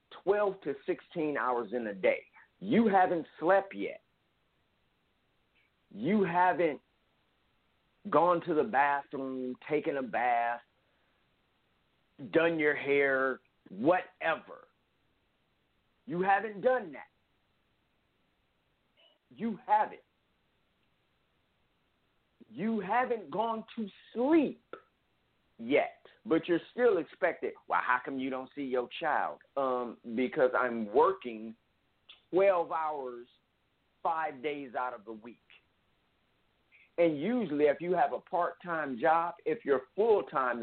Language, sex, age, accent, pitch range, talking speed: English, male, 50-69, American, 125-200 Hz, 105 wpm